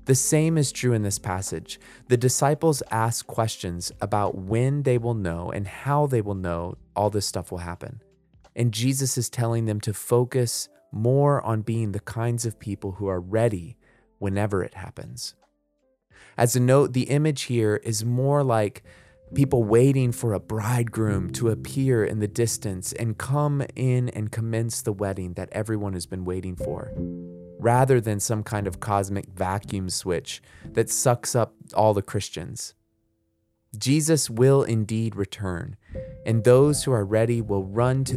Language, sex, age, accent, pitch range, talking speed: English, male, 20-39, American, 100-125 Hz, 165 wpm